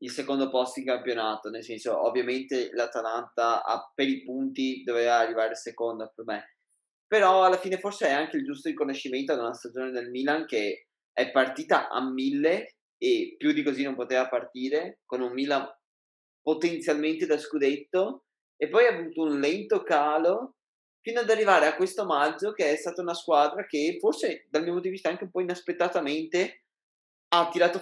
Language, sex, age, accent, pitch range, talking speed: Italian, male, 20-39, native, 125-180 Hz, 175 wpm